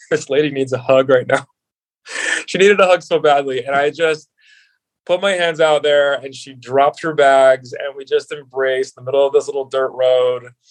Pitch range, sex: 130-150 Hz, male